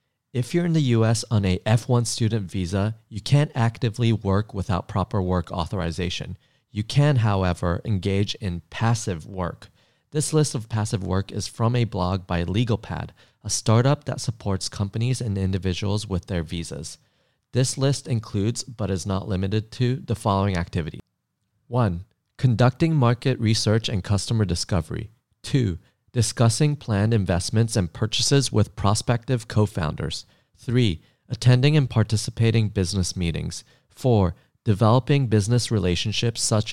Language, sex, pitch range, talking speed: English, male, 95-120 Hz, 135 wpm